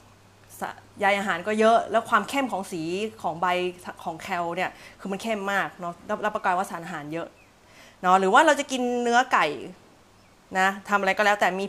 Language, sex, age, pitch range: Thai, female, 30-49, 175-235 Hz